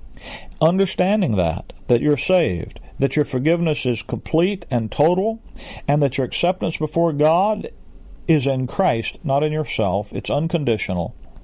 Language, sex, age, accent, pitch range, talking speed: English, male, 50-69, American, 115-155 Hz, 135 wpm